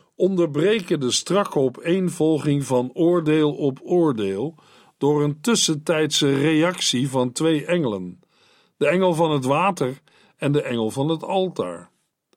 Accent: Dutch